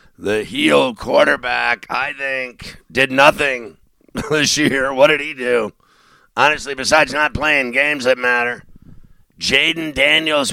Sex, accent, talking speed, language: male, American, 125 wpm, English